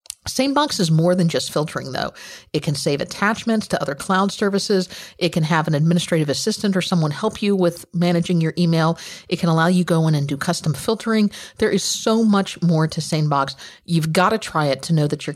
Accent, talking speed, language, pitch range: American, 215 wpm, English, 155-190 Hz